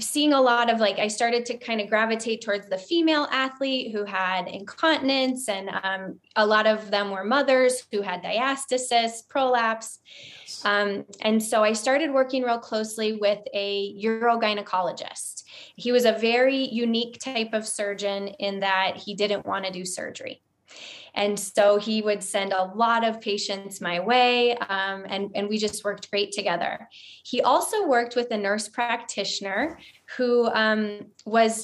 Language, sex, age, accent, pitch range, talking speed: English, female, 20-39, American, 200-240 Hz, 165 wpm